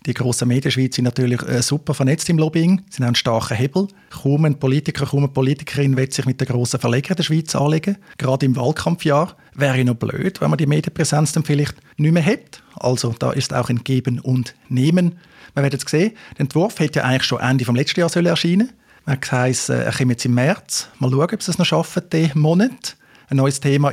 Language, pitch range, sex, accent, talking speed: German, 130-165 Hz, male, Austrian, 225 wpm